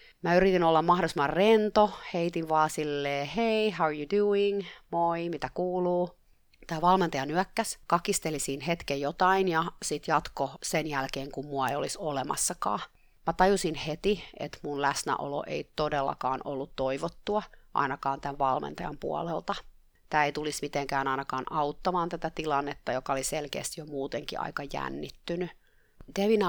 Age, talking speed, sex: 30-49, 140 wpm, female